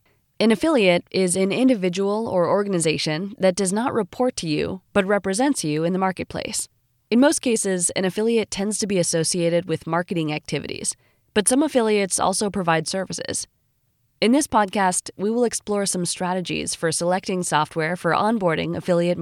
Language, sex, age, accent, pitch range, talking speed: English, female, 20-39, American, 160-210 Hz, 160 wpm